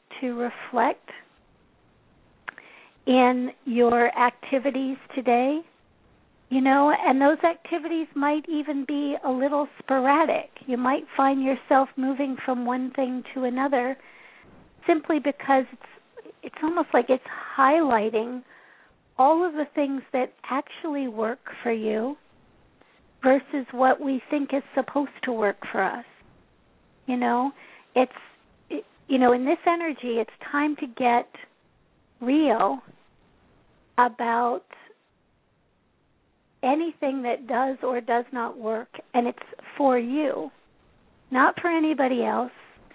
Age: 50-69